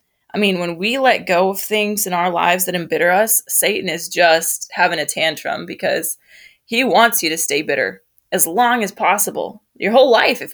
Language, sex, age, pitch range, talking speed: English, female, 20-39, 175-215 Hz, 200 wpm